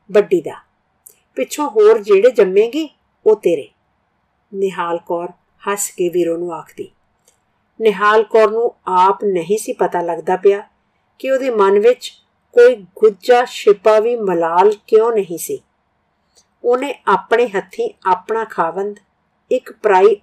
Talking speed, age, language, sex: 120 wpm, 50-69, Punjabi, female